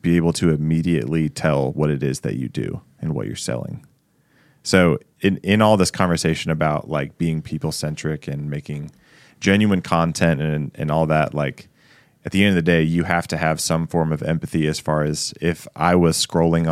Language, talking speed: English, 200 wpm